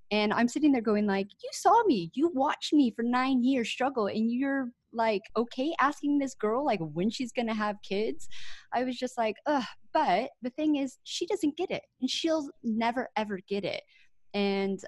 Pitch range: 185-255 Hz